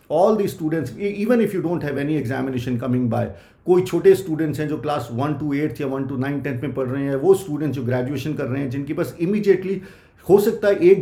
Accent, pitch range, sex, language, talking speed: native, 125-160 Hz, male, Hindi, 245 wpm